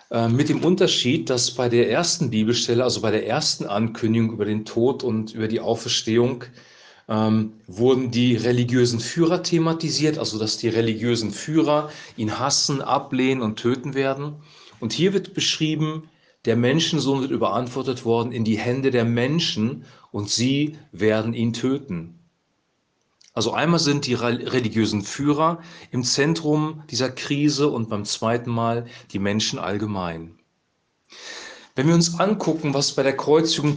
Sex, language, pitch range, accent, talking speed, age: male, German, 115-150 Hz, German, 145 wpm, 40-59